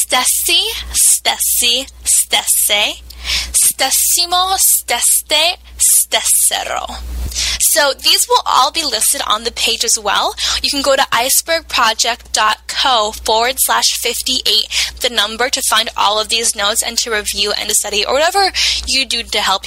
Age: 10-29